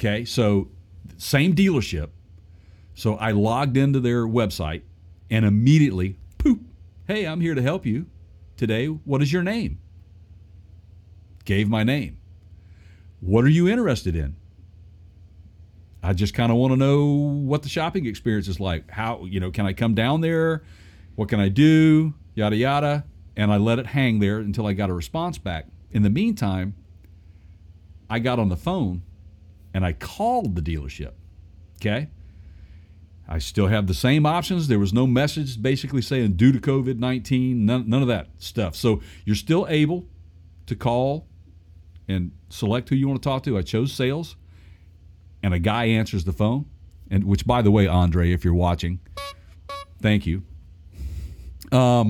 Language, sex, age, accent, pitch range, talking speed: English, male, 50-69, American, 85-125 Hz, 160 wpm